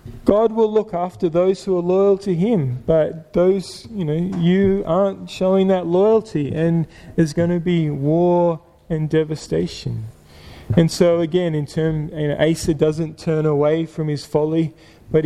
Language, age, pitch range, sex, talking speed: English, 20-39, 145-170 Hz, male, 165 wpm